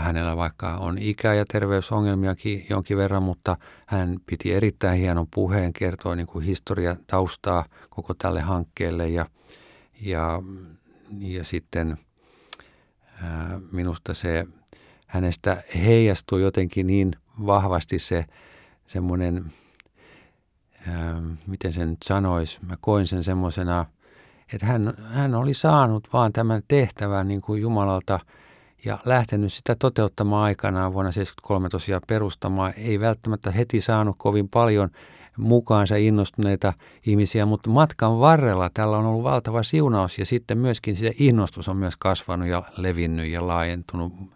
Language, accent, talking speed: Finnish, native, 125 wpm